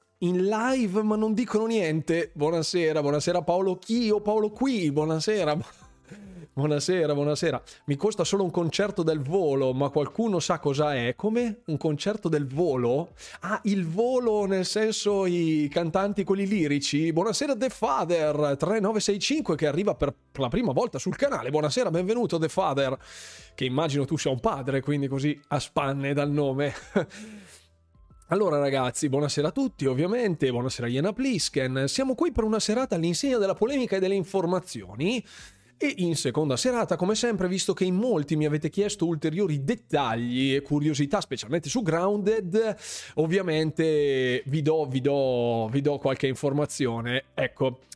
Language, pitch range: Italian, 145-205 Hz